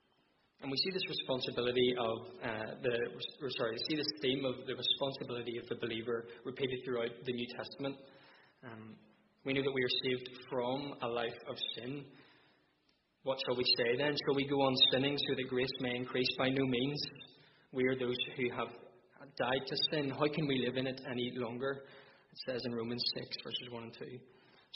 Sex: male